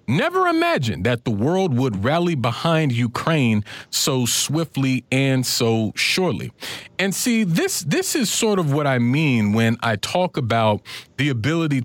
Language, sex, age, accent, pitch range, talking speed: English, male, 40-59, American, 110-155 Hz, 150 wpm